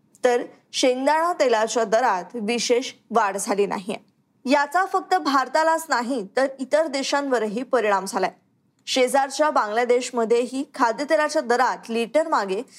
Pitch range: 230-295 Hz